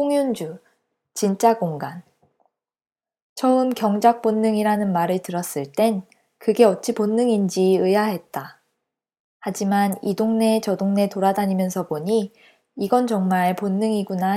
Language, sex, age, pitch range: Korean, female, 20-39, 195-235 Hz